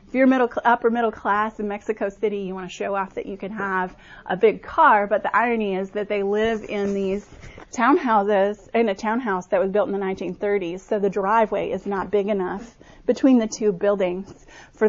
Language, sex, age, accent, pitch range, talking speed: English, female, 30-49, American, 195-230 Hz, 210 wpm